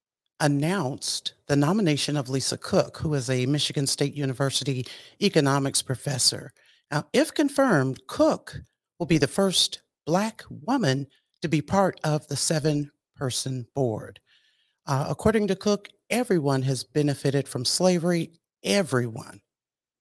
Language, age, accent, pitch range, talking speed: English, 50-69, American, 140-195 Hz, 125 wpm